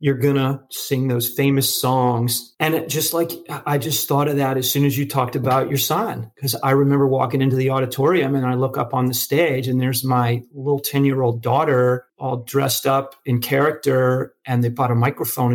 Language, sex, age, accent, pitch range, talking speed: English, male, 30-49, American, 125-155 Hz, 215 wpm